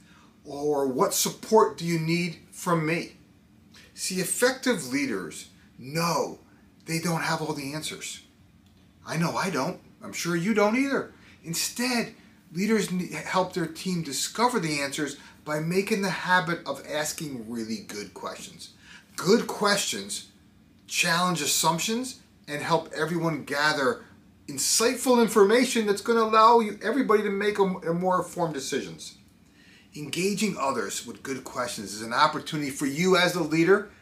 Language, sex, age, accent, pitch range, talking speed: English, male, 30-49, American, 160-220 Hz, 135 wpm